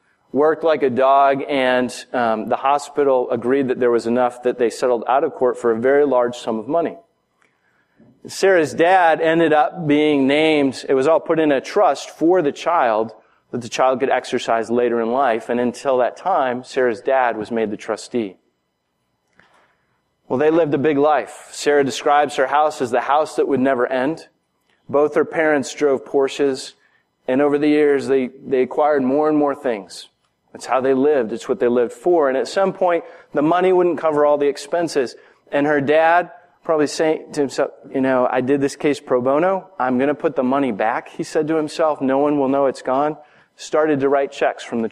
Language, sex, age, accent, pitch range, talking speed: English, male, 30-49, American, 125-150 Hz, 200 wpm